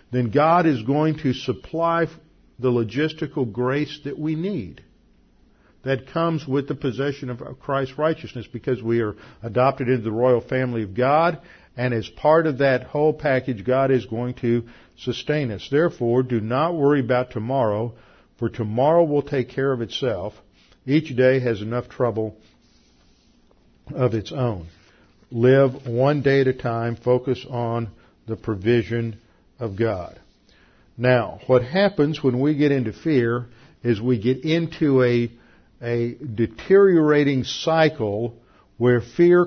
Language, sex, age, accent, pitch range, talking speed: English, male, 50-69, American, 120-145 Hz, 145 wpm